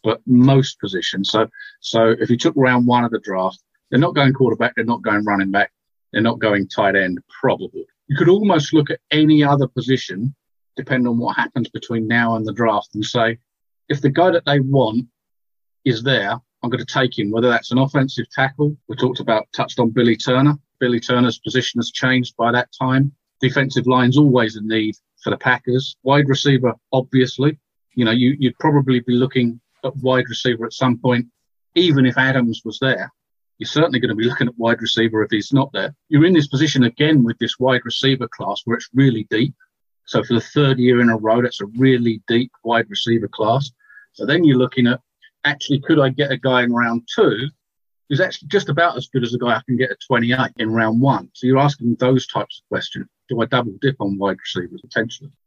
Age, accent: 40-59, British